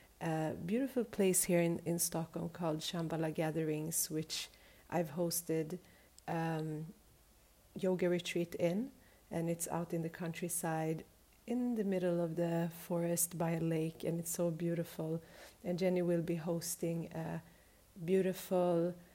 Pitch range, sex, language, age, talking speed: 165-185 Hz, female, English, 40-59, 135 wpm